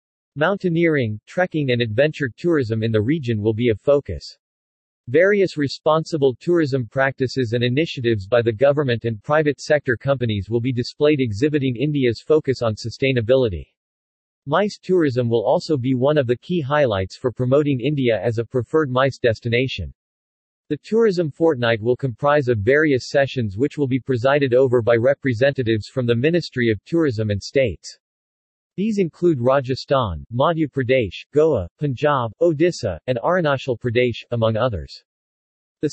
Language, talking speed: English, 145 wpm